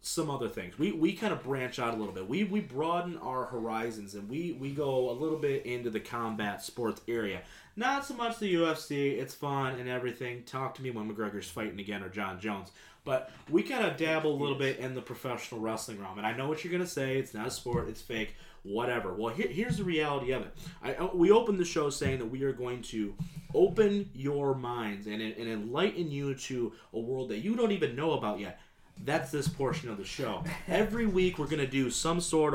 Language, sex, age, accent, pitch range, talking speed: English, male, 30-49, American, 120-165 Hz, 230 wpm